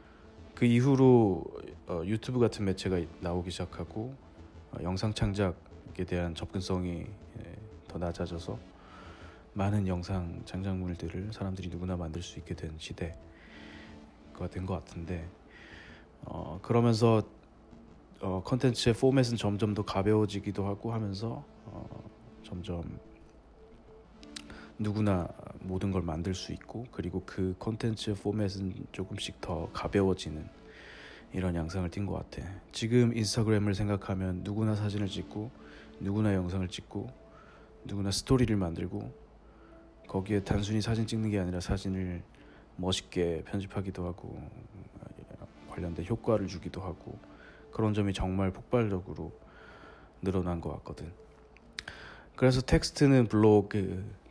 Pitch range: 90-110 Hz